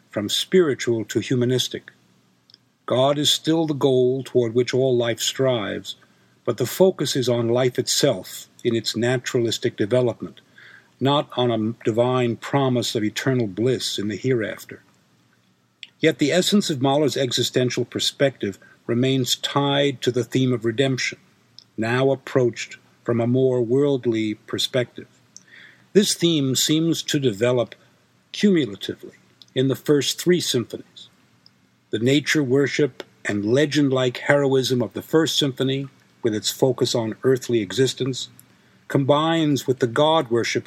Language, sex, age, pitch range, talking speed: English, male, 50-69, 115-140 Hz, 130 wpm